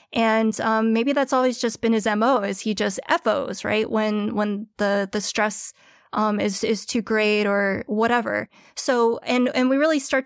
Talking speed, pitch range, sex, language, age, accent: 185 wpm, 215-255 Hz, female, English, 20-39, American